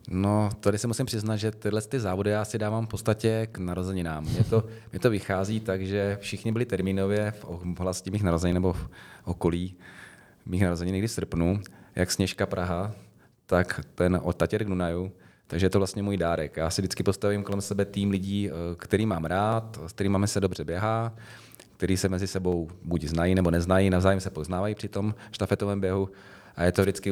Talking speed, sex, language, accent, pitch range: 195 wpm, male, Czech, native, 85-100 Hz